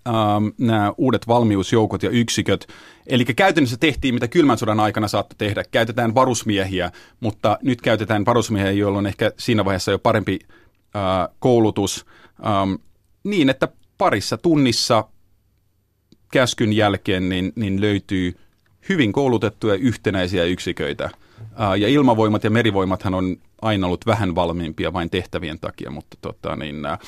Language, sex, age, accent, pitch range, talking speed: Finnish, male, 30-49, native, 100-120 Hz, 135 wpm